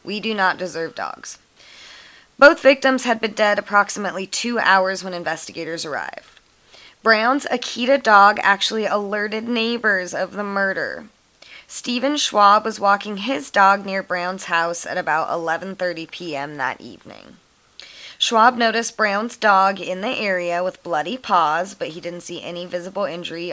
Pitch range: 170-215 Hz